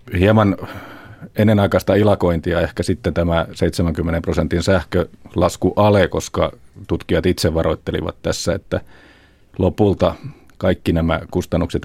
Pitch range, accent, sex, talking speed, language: 85-95 Hz, native, male, 100 wpm, Finnish